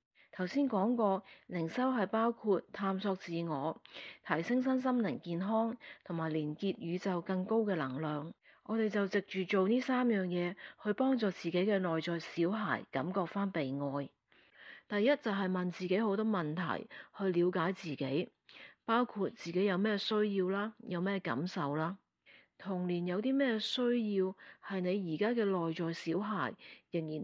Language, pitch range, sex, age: Chinese, 170-215 Hz, female, 40-59